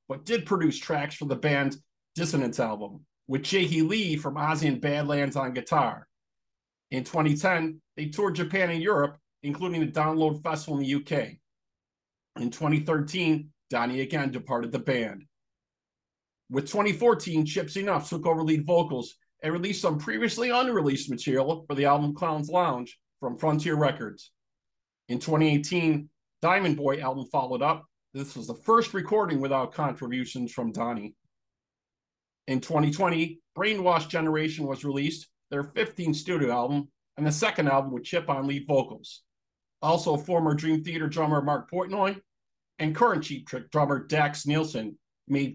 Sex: male